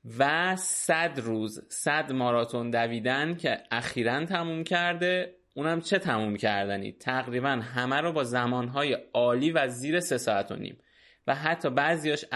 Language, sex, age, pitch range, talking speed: Persian, male, 20-39, 115-155 Hz, 140 wpm